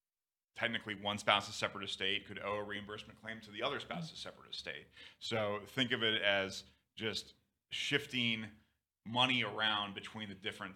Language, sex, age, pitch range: English, male, 30-49, 95-115 Hz